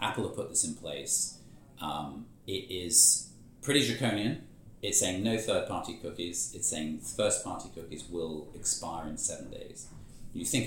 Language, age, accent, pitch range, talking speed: English, 30-49, British, 85-120 Hz, 155 wpm